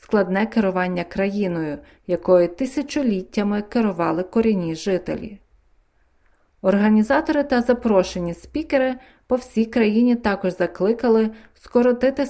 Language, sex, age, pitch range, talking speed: Ukrainian, female, 30-49, 180-230 Hz, 90 wpm